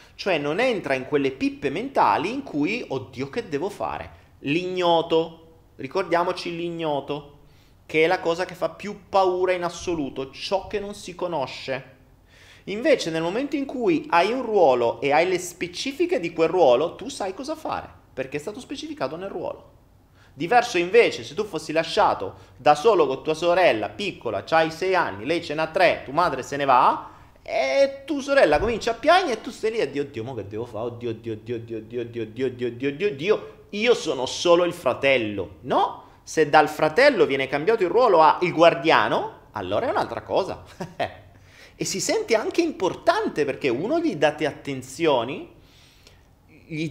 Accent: native